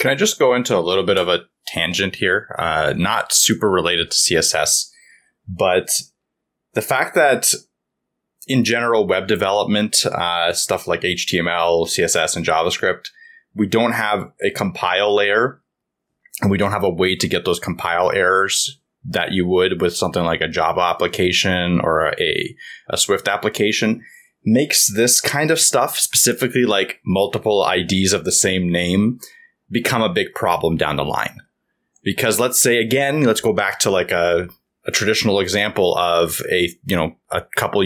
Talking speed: 165 wpm